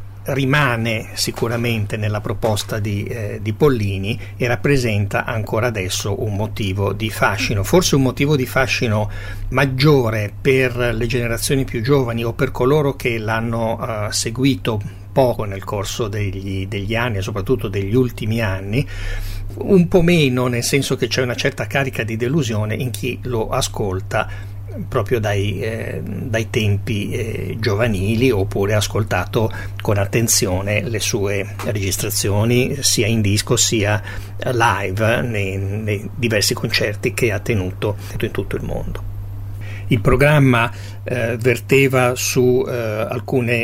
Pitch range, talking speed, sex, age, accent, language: 100-125 Hz, 135 wpm, male, 60-79, native, Italian